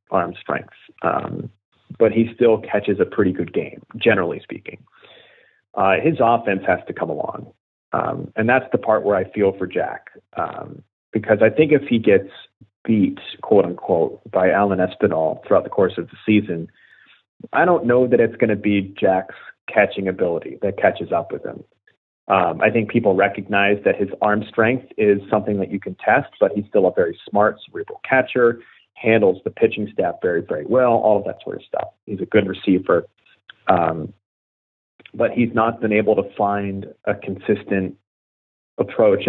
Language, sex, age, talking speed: English, male, 30-49, 175 wpm